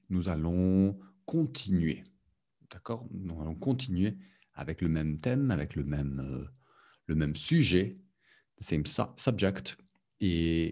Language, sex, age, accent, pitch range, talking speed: English, male, 50-69, French, 80-110 Hz, 130 wpm